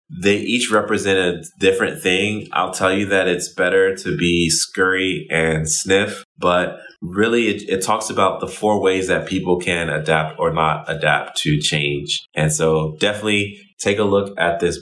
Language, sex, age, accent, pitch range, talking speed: English, male, 20-39, American, 85-100 Hz, 175 wpm